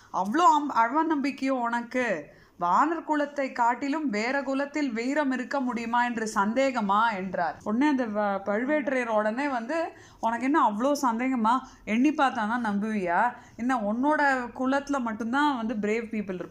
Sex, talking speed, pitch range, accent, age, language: female, 50 wpm, 205-280 Hz, native, 20-39, Tamil